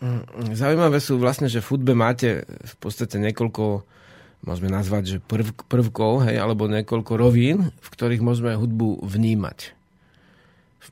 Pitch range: 110-135 Hz